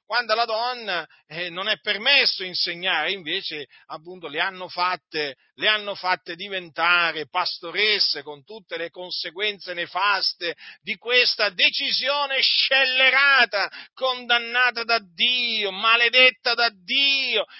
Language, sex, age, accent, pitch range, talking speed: Italian, male, 40-59, native, 180-235 Hz, 105 wpm